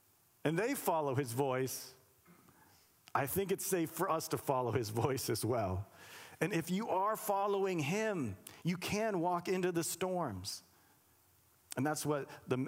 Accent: American